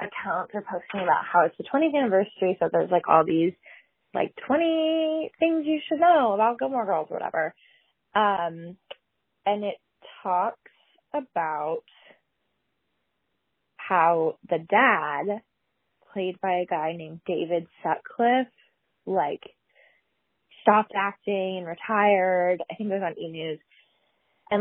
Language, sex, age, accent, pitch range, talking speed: English, female, 20-39, American, 180-225 Hz, 130 wpm